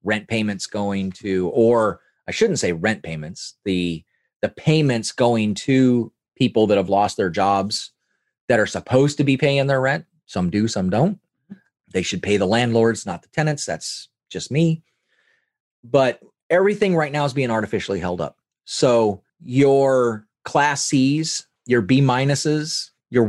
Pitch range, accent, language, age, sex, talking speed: 105-135 Hz, American, English, 30-49, male, 155 wpm